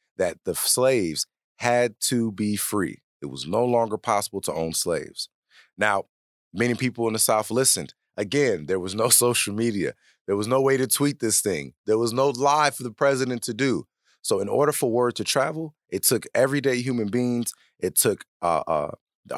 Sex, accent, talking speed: male, American, 190 wpm